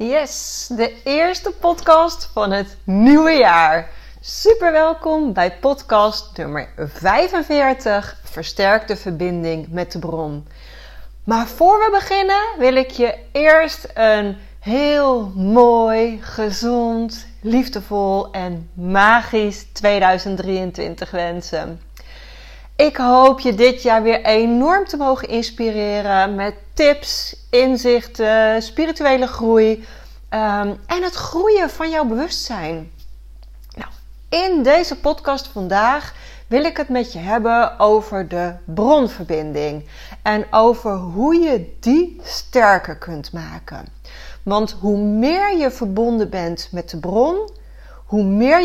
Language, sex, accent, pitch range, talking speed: Dutch, female, Dutch, 195-275 Hz, 110 wpm